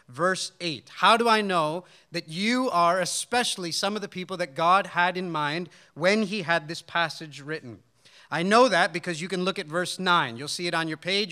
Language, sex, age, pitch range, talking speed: English, male, 40-59, 175-215 Hz, 215 wpm